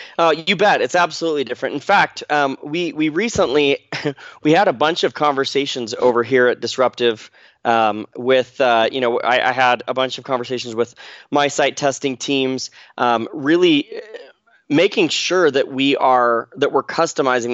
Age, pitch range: 20-39, 125-165 Hz